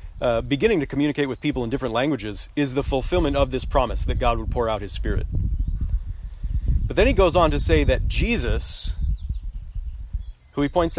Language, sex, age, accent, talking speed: English, male, 40-59, American, 185 wpm